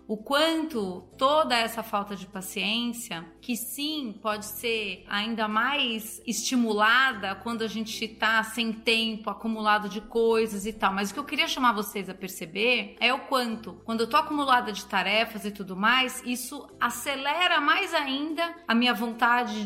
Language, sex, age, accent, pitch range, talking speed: Portuguese, female, 30-49, Brazilian, 205-250 Hz, 160 wpm